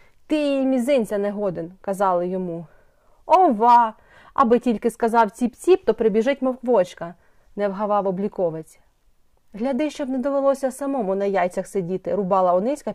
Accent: native